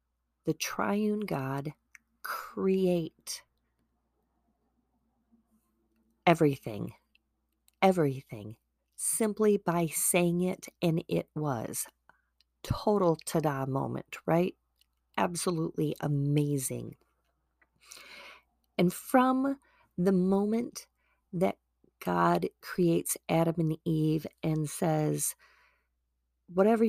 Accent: American